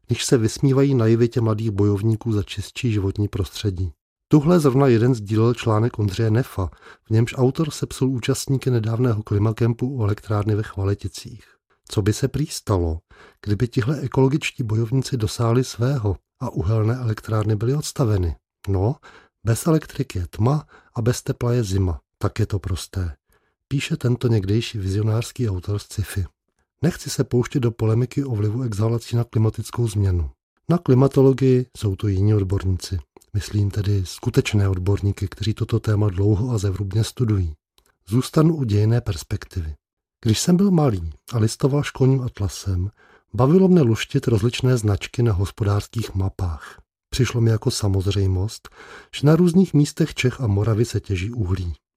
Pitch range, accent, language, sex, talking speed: 100-125 Hz, native, Czech, male, 145 wpm